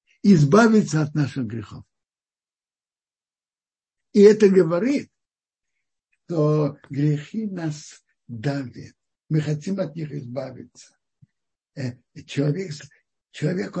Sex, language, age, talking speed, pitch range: male, Russian, 60-79, 80 wpm, 140-185 Hz